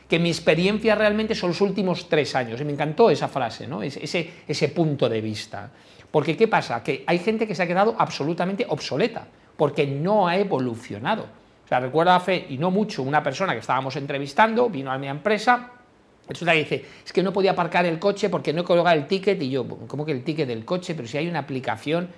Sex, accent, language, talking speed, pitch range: male, Spanish, Spanish, 220 wpm, 135-180 Hz